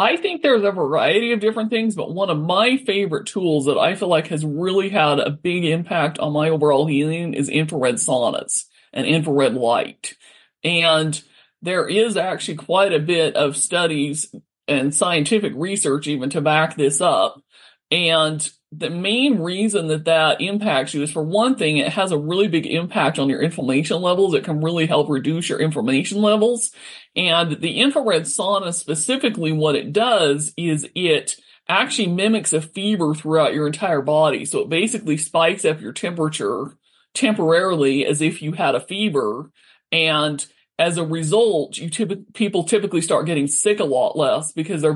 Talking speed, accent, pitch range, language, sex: 170 wpm, American, 150-195 Hz, English, male